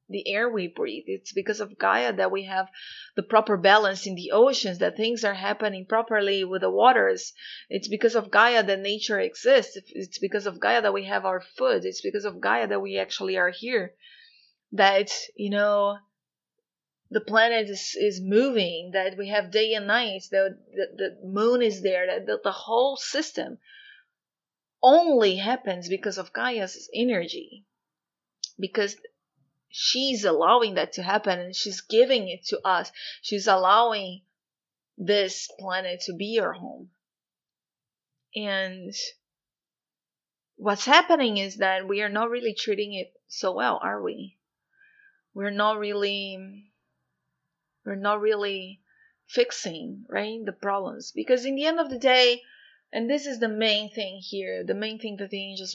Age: 30-49